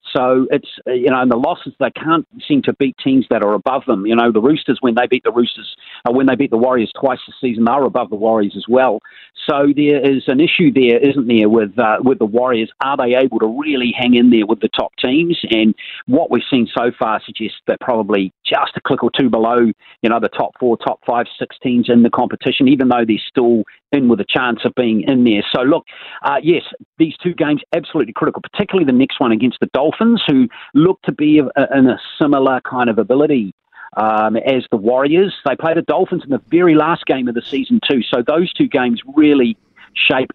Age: 40-59